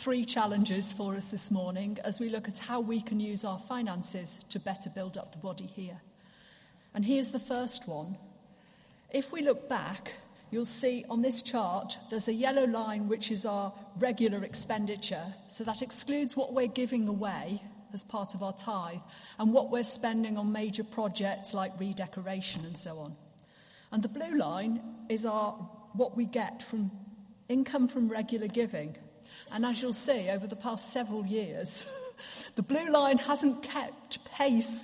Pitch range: 195-240 Hz